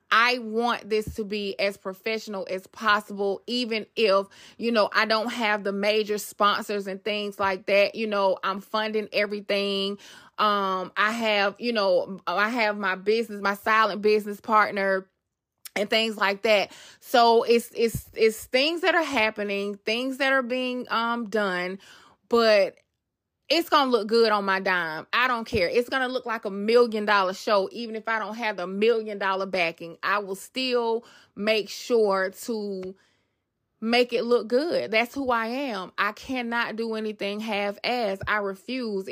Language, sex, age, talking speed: English, female, 20-39, 170 wpm